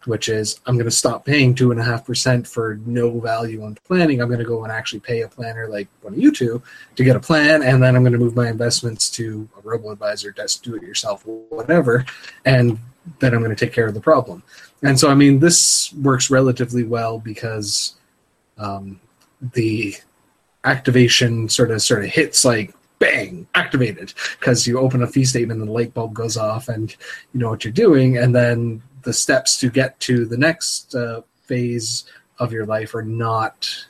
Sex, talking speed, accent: male, 195 wpm, American